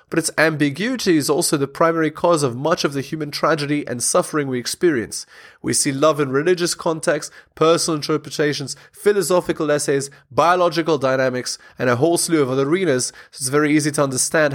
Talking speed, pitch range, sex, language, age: 175 wpm, 140-185 Hz, male, English, 20-39